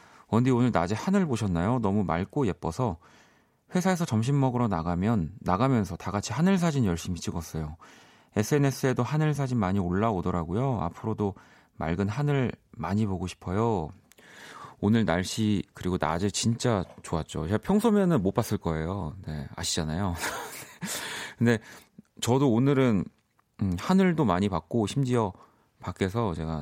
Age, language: 30-49, Korean